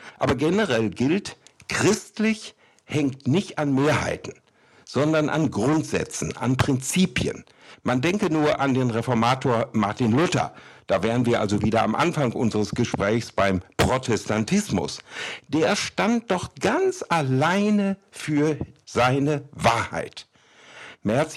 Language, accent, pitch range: German, German, 120-165 Hz